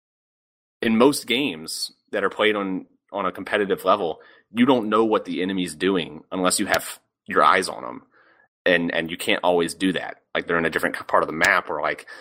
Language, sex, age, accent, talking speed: English, male, 30-49, American, 210 wpm